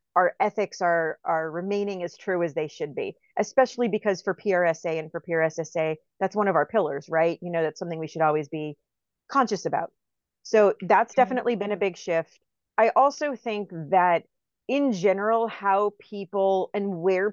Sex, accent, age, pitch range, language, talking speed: female, American, 40-59, 180-240 Hz, English, 175 wpm